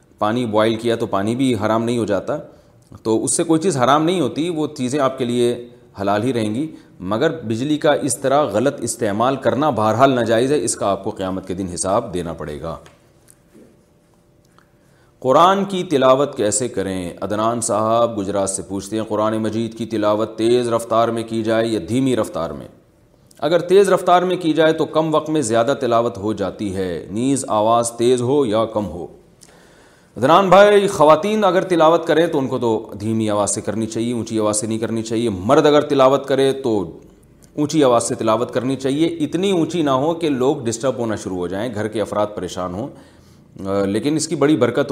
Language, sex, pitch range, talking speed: Urdu, male, 110-140 Hz, 200 wpm